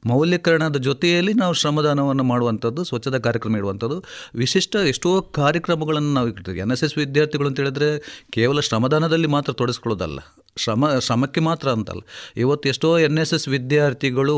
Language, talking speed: Kannada, 130 wpm